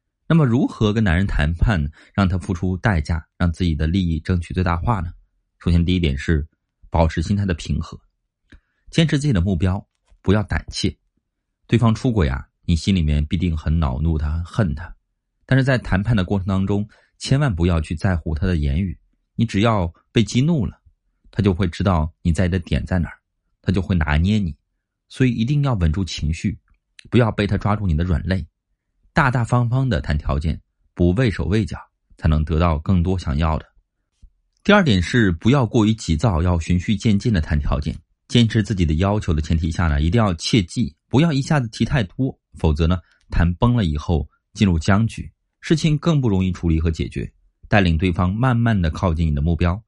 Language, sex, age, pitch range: Chinese, male, 30-49, 80-105 Hz